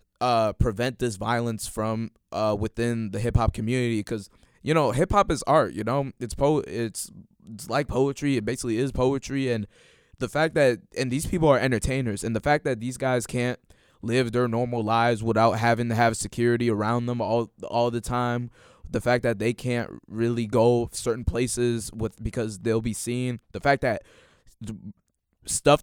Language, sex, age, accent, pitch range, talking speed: English, male, 20-39, American, 110-125 Hz, 180 wpm